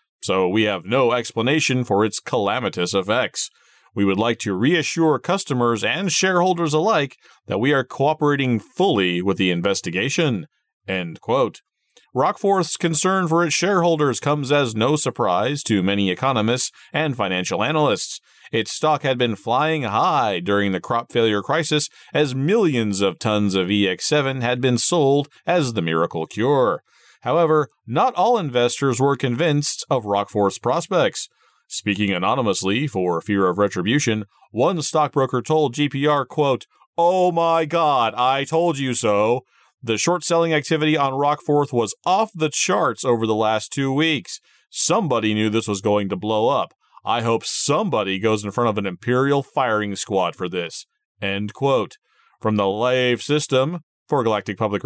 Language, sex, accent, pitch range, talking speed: English, male, American, 105-155 Hz, 150 wpm